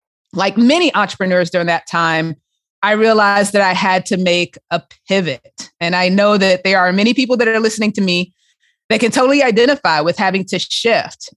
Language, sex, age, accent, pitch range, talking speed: English, female, 30-49, American, 180-230 Hz, 190 wpm